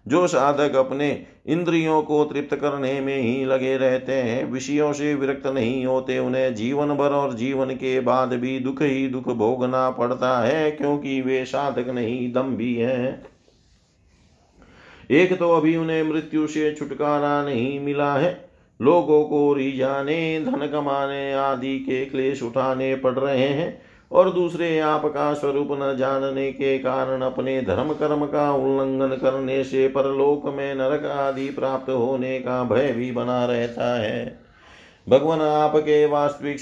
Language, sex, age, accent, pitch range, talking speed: Hindi, male, 50-69, native, 130-145 Hz, 145 wpm